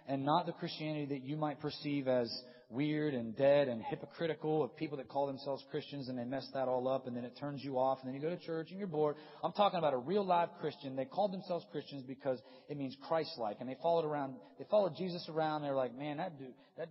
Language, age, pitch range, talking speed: English, 30-49, 130-160 Hz, 250 wpm